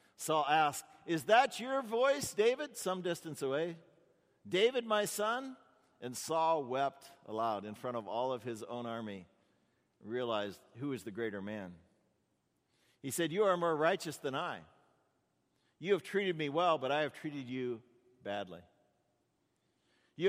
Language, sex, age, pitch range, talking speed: English, male, 50-69, 105-160 Hz, 155 wpm